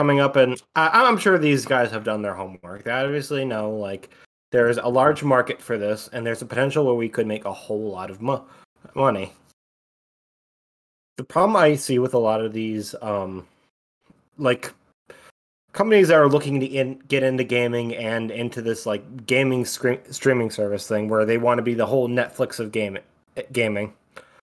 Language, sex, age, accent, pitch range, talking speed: English, male, 20-39, American, 110-135 Hz, 175 wpm